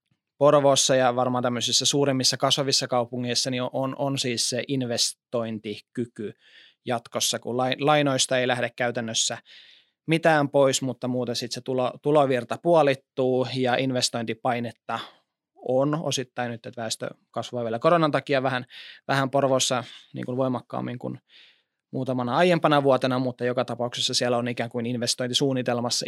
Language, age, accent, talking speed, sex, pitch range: Finnish, 20-39, native, 130 wpm, male, 120-135 Hz